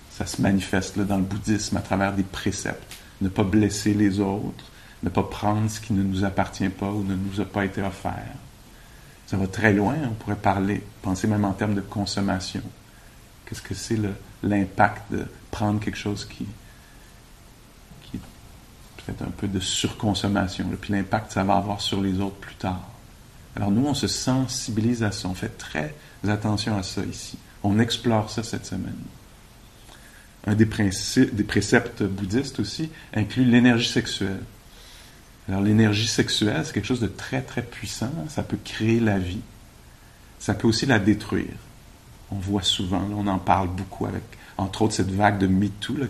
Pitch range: 100-110 Hz